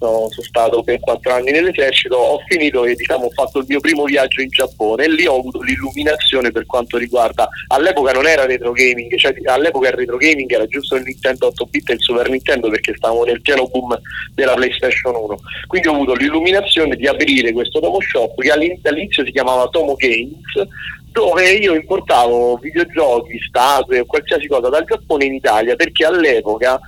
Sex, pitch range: male, 130-190 Hz